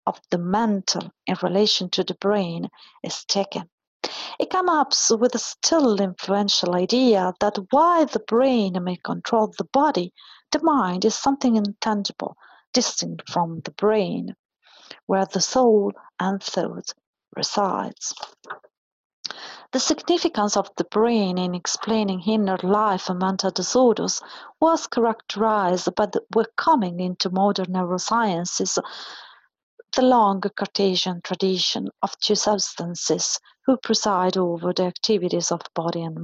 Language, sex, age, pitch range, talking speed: English, female, 40-59, 185-235 Hz, 125 wpm